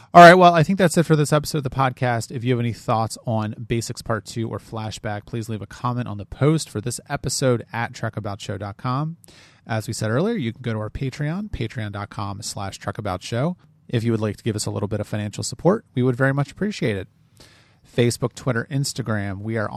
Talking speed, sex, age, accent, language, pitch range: 220 wpm, male, 30-49, American, English, 105-135 Hz